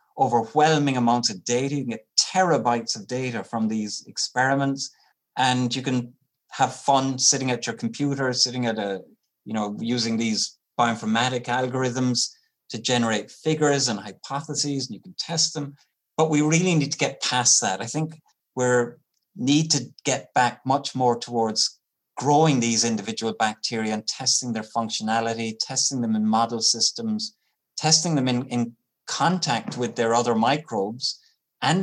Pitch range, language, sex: 115-140 Hz, English, male